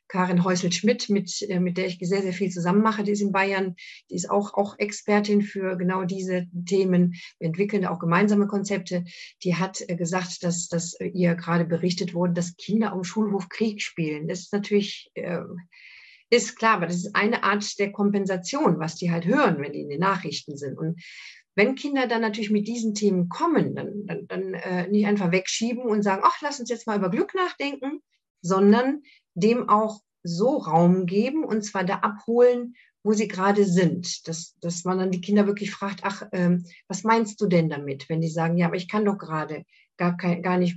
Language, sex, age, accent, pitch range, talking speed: German, female, 50-69, German, 175-210 Hz, 200 wpm